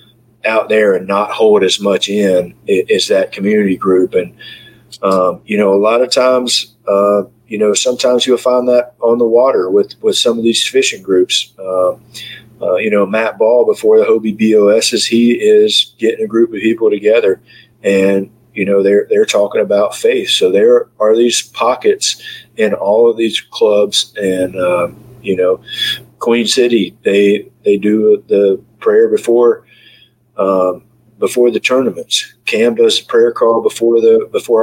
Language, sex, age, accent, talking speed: English, male, 40-59, American, 170 wpm